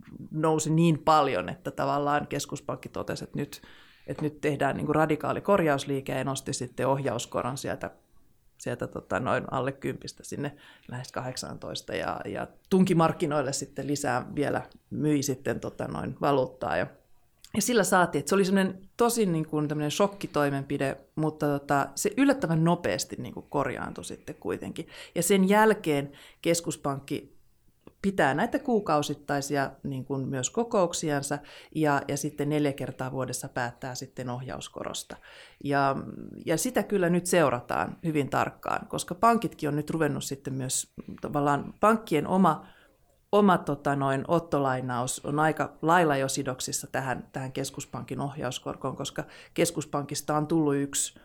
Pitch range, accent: 135-170 Hz, native